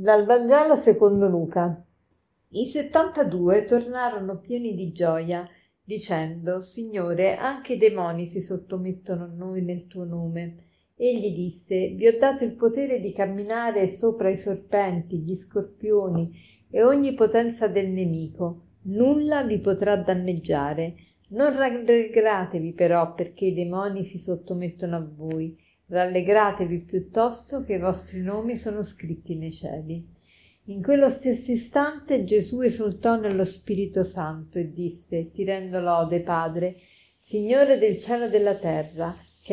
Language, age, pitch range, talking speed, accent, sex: Italian, 50-69, 175-230 Hz, 130 wpm, native, female